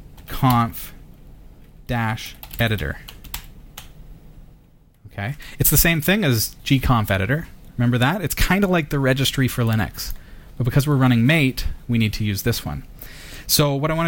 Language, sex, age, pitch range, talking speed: English, male, 30-49, 110-145 Hz, 145 wpm